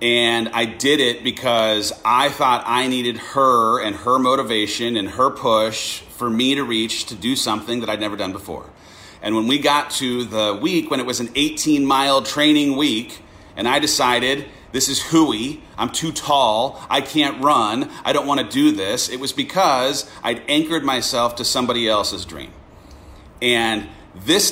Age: 40-59